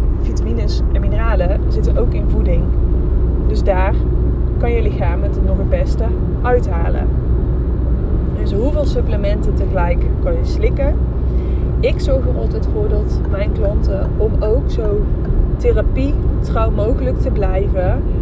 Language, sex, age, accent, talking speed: Dutch, female, 20-39, Dutch, 130 wpm